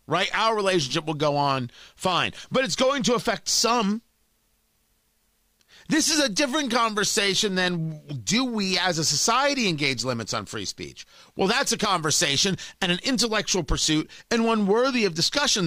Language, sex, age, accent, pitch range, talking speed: English, male, 40-59, American, 145-210 Hz, 160 wpm